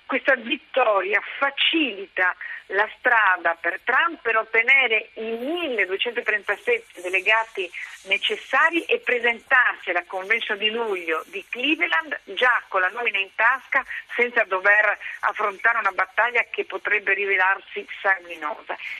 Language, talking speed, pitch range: Italian, 115 wpm, 190-265 Hz